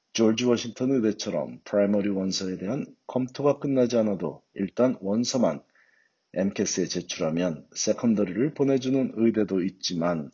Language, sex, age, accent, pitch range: Korean, male, 40-59, native, 95-120 Hz